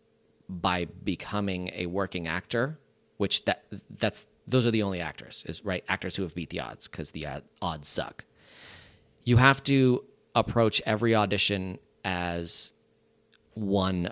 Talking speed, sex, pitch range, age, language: 140 wpm, male, 95-120 Hz, 30-49, English